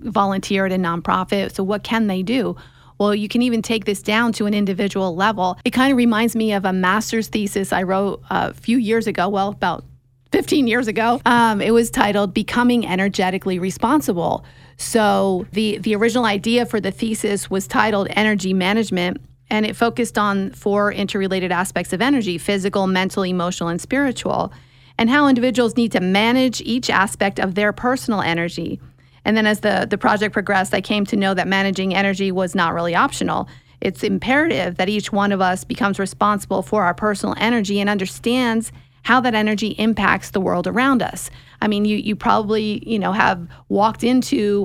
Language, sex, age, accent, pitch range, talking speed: English, female, 40-59, American, 190-230 Hz, 185 wpm